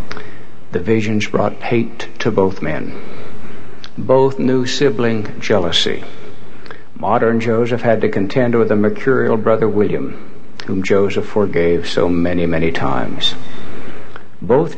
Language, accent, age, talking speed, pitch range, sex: English, American, 60-79, 120 wpm, 105-130 Hz, male